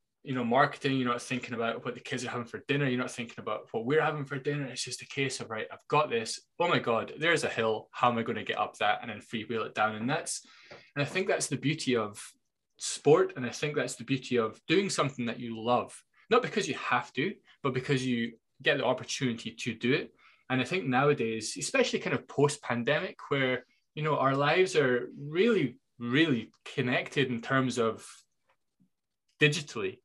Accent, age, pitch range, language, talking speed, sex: British, 20-39, 120-150 Hz, English, 215 wpm, male